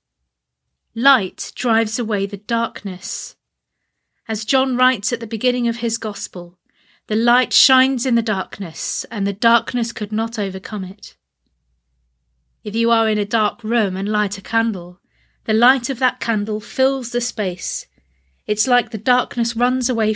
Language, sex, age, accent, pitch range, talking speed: English, female, 30-49, British, 185-240 Hz, 155 wpm